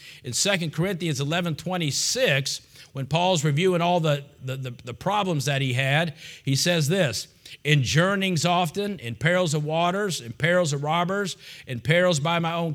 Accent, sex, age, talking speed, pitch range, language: American, male, 50-69, 175 wpm, 140-180 Hz, English